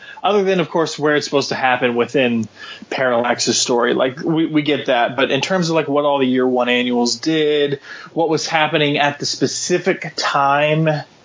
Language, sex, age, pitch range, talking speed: English, male, 20-39, 130-160 Hz, 190 wpm